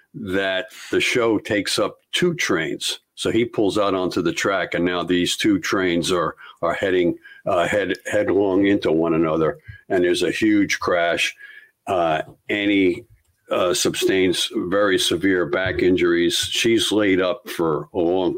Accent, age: American, 60-79